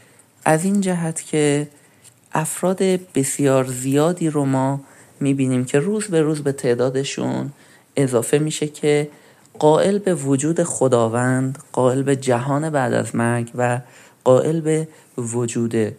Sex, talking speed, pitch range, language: male, 125 wpm, 130-160 Hz, Persian